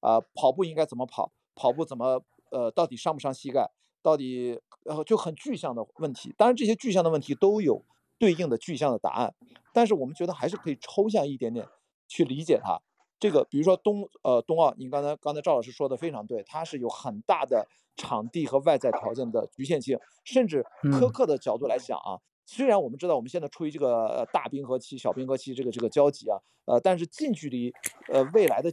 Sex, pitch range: male, 130-185 Hz